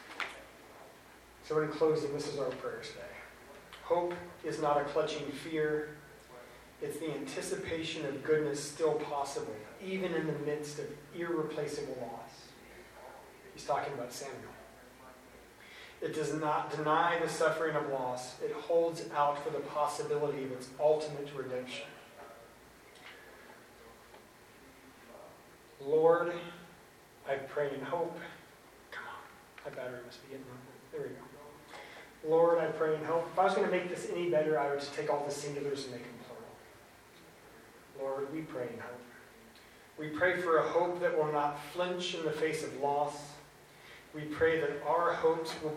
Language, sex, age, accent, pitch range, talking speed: English, male, 30-49, American, 145-165 Hz, 150 wpm